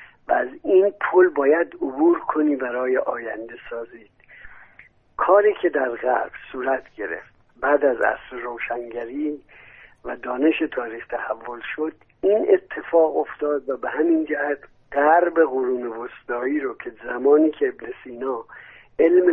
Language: Persian